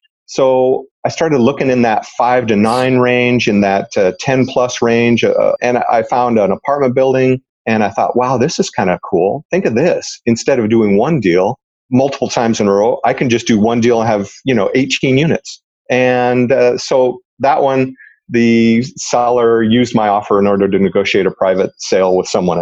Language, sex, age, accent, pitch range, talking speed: English, male, 40-59, American, 105-130 Hz, 200 wpm